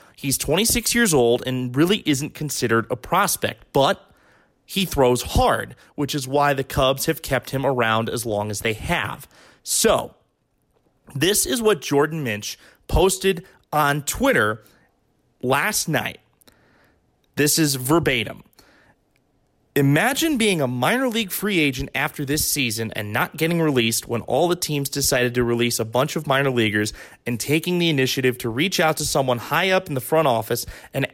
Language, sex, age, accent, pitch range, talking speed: English, male, 30-49, American, 120-150 Hz, 160 wpm